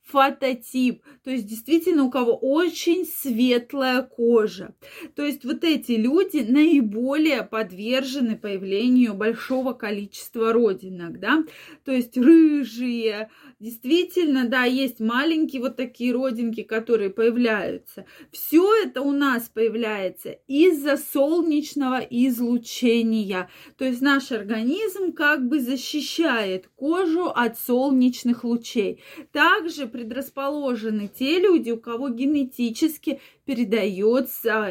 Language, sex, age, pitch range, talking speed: Russian, female, 20-39, 230-295 Hz, 105 wpm